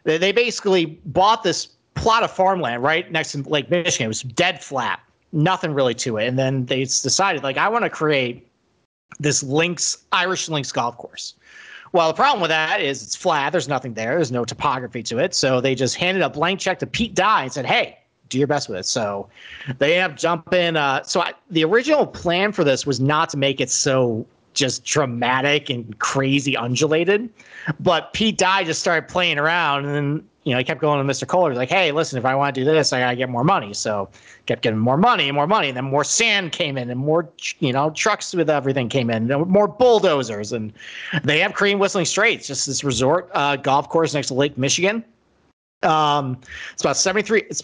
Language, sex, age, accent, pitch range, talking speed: English, male, 40-59, American, 135-180 Hz, 215 wpm